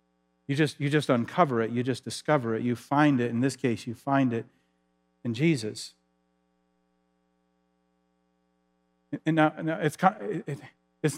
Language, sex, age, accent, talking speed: English, male, 40-59, American, 140 wpm